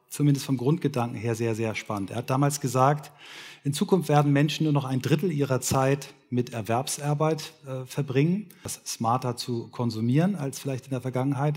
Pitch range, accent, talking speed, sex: 115-145 Hz, German, 175 wpm, male